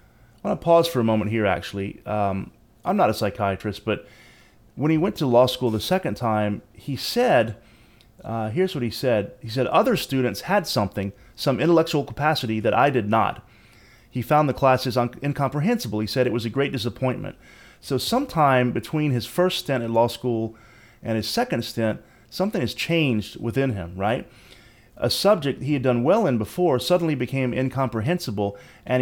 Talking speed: 180 wpm